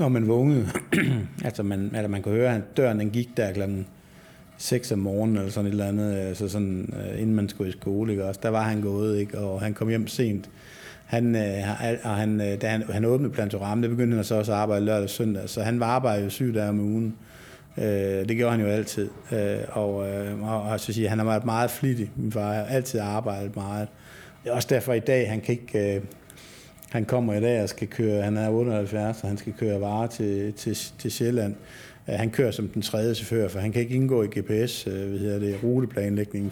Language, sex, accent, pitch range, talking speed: Danish, male, native, 105-120 Hz, 210 wpm